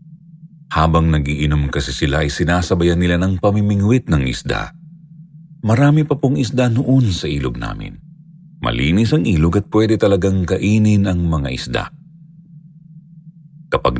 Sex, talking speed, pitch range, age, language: male, 130 wpm, 85-125 Hz, 50-69, Filipino